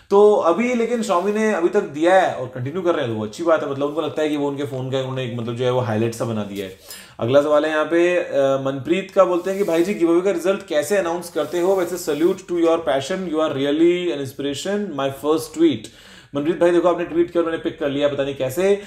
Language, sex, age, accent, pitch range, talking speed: Hindi, male, 30-49, native, 135-185 Hz, 250 wpm